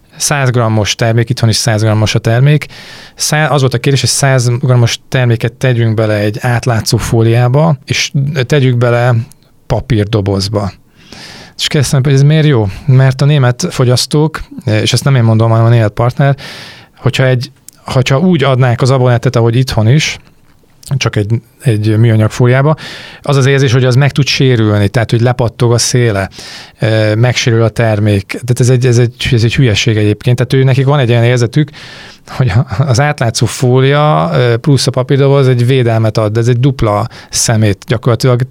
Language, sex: Hungarian, male